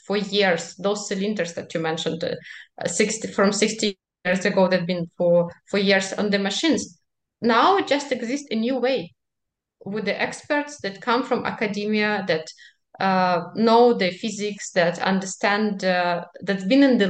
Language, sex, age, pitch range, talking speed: English, female, 20-39, 185-235 Hz, 170 wpm